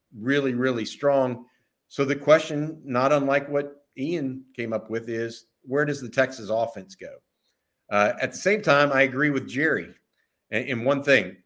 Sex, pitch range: male, 125-165 Hz